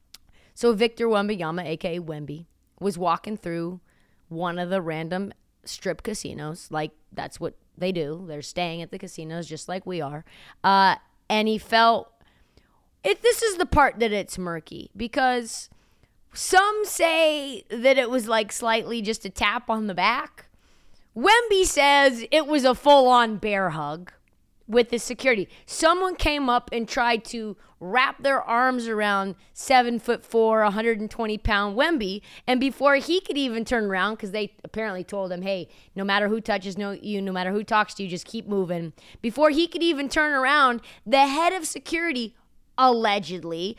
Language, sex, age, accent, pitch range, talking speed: English, female, 30-49, American, 195-295 Hz, 165 wpm